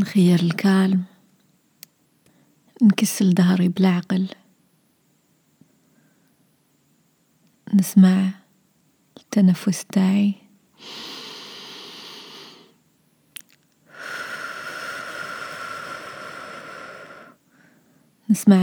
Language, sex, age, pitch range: Arabic, female, 30-49, 195-240 Hz